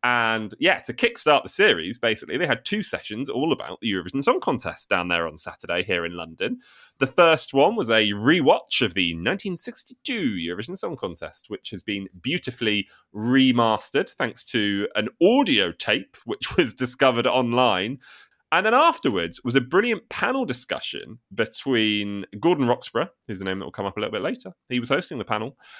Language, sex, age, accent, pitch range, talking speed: English, male, 30-49, British, 105-165 Hz, 180 wpm